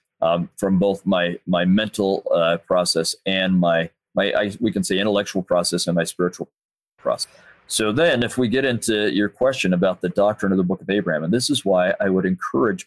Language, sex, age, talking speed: English, male, 40-59, 195 wpm